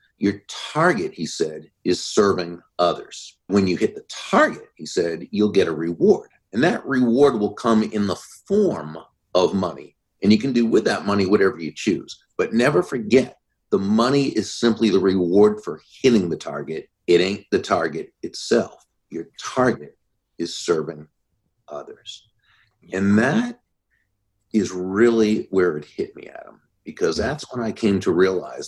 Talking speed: 160 wpm